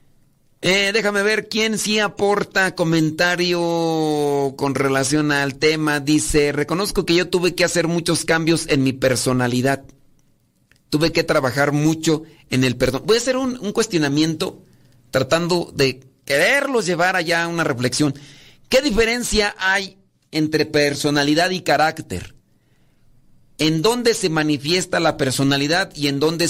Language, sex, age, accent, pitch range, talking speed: Spanish, male, 40-59, Mexican, 135-170 Hz, 135 wpm